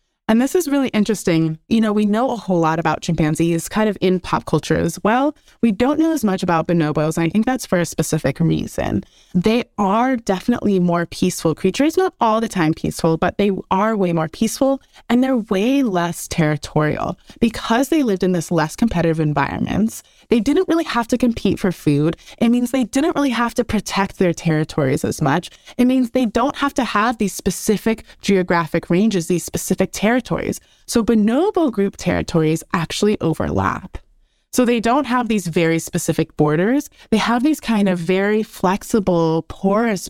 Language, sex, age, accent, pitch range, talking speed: English, female, 20-39, American, 170-240 Hz, 185 wpm